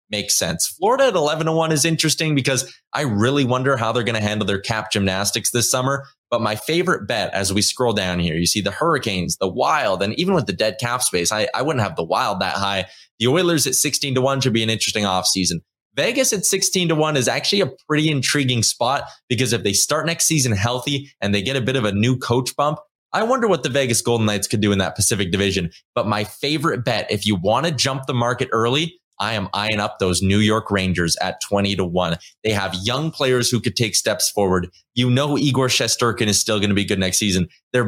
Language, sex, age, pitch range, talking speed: English, male, 20-39, 105-140 Hz, 240 wpm